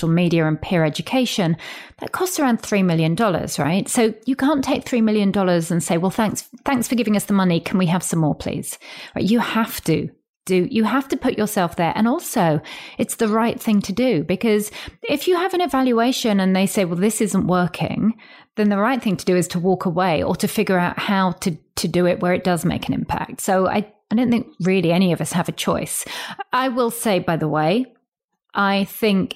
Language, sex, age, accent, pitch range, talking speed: English, female, 40-59, British, 175-220 Hz, 225 wpm